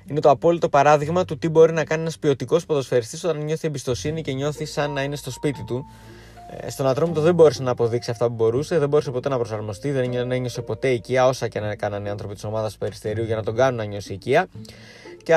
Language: Greek